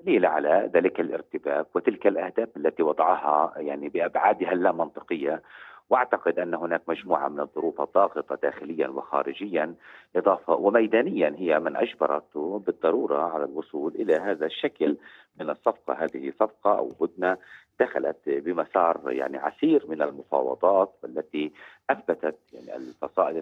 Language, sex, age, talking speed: Arabic, male, 40-59, 120 wpm